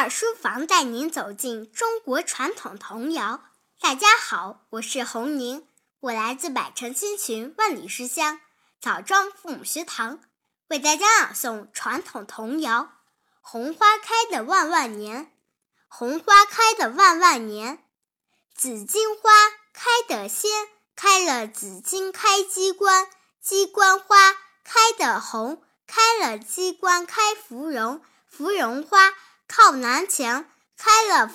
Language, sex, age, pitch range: Chinese, male, 10-29, 265-410 Hz